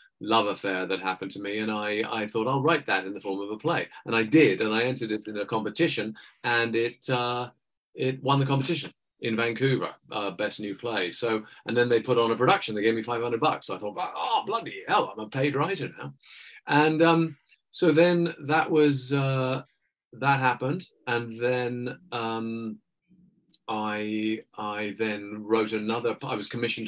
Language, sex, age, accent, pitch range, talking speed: English, male, 40-59, British, 100-130 Hz, 190 wpm